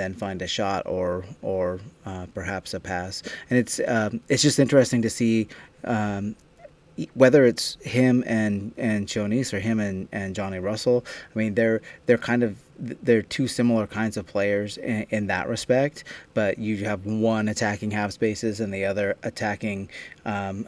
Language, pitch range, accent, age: English, 100-115 Hz, American, 30-49